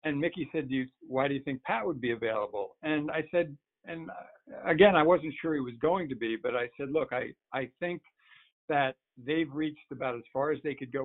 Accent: American